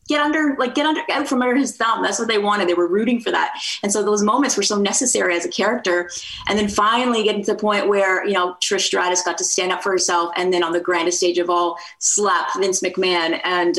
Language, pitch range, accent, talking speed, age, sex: English, 175-220 Hz, American, 255 wpm, 30-49, female